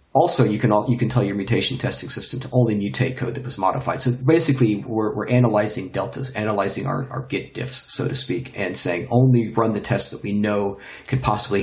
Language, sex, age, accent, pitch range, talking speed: English, male, 40-59, American, 105-130 Hz, 215 wpm